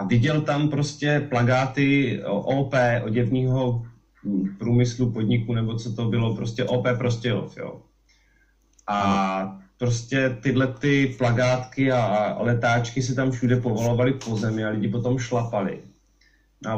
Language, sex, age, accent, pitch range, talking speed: Czech, male, 30-49, native, 115-130 Hz, 130 wpm